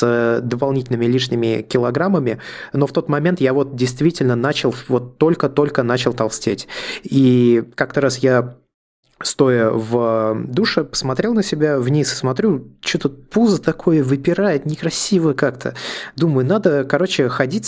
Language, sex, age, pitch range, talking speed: Russian, male, 20-39, 125-150 Hz, 135 wpm